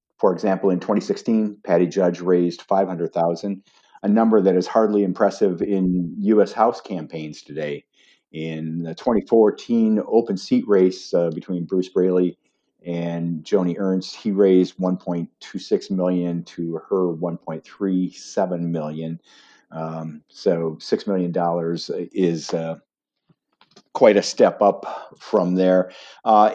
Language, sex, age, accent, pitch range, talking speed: English, male, 50-69, American, 85-100 Hz, 120 wpm